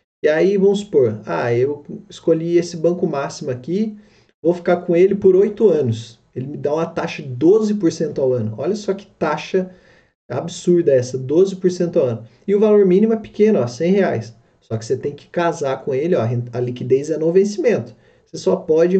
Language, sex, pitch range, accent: Portuguese, male, 120-180 Hz, Brazilian